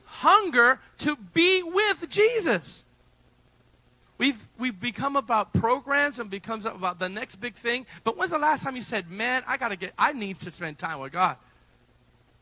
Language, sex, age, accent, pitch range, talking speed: English, male, 40-59, American, 170-240 Hz, 170 wpm